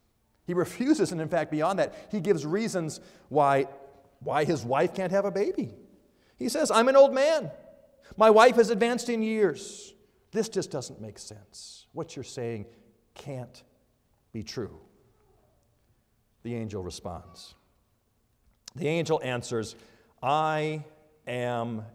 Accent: American